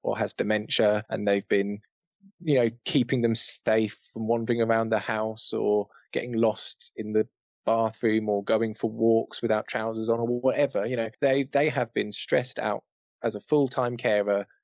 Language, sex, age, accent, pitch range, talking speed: English, male, 20-39, British, 110-130 Hz, 175 wpm